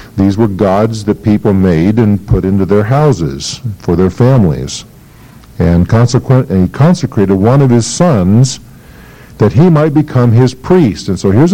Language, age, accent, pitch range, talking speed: English, 50-69, American, 100-135 Hz, 160 wpm